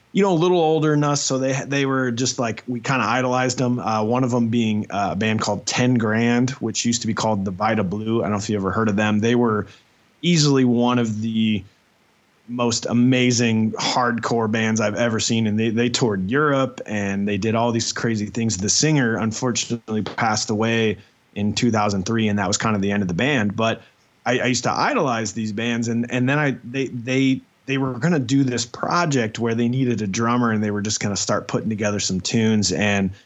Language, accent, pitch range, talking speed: English, American, 110-130 Hz, 225 wpm